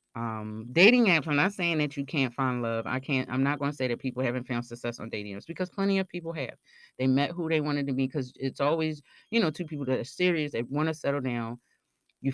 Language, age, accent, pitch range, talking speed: English, 30-49, American, 125-160 Hz, 265 wpm